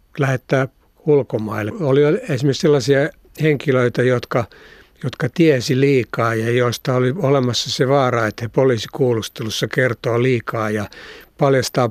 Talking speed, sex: 115 wpm, male